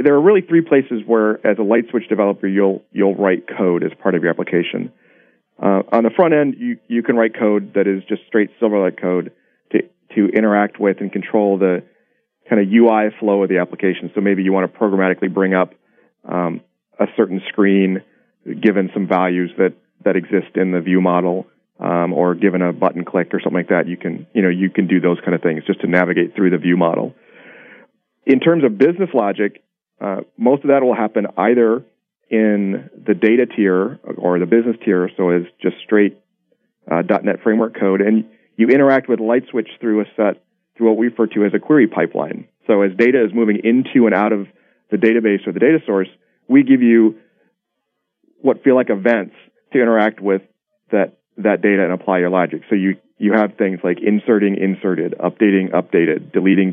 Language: English